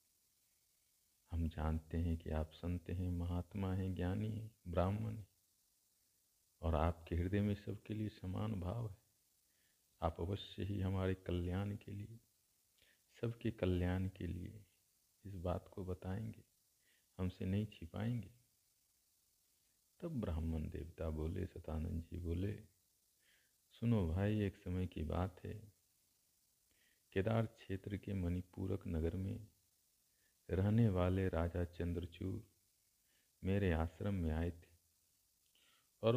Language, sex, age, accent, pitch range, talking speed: Hindi, male, 50-69, native, 85-105 Hz, 115 wpm